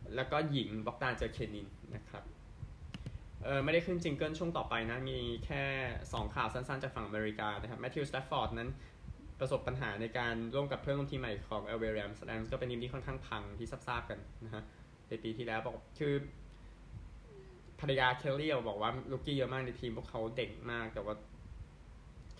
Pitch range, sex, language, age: 110-130 Hz, male, Thai, 20-39